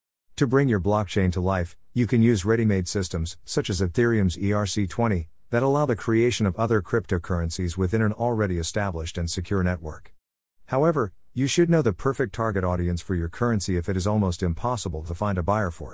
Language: English